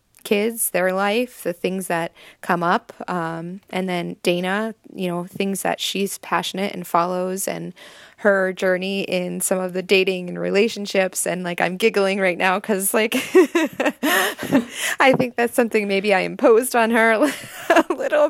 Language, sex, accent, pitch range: English, female, American, 185-220 Hz